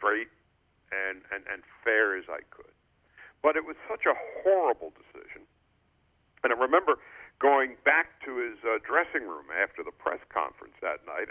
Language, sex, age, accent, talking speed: English, male, 60-79, American, 165 wpm